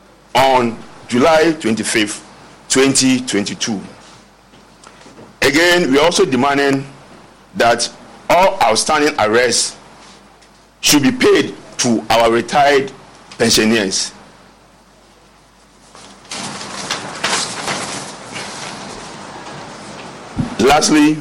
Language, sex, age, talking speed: English, male, 50-69, 60 wpm